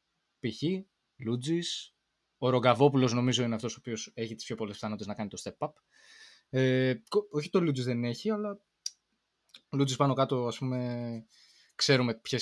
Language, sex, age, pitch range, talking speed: Greek, male, 20-39, 120-160 Hz, 155 wpm